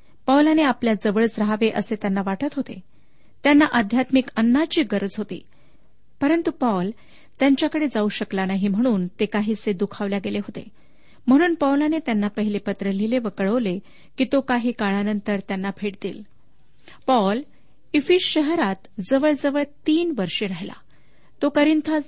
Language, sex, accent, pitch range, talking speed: Marathi, female, native, 200-275 Hz, 130 wpm